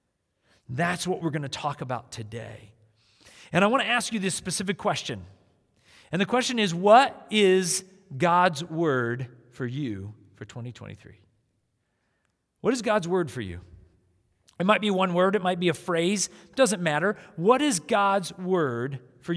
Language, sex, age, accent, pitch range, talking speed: English, male, 40-59, American, 130-220 Hz, 165 wpm